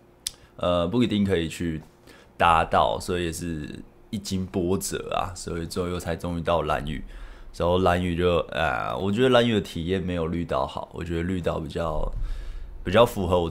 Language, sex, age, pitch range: Chinese, male, 20-39, 85-100 Hz